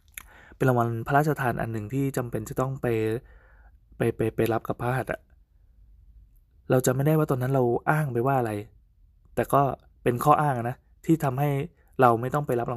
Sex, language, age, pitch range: male, Thai, 20-39, 115-140 Hz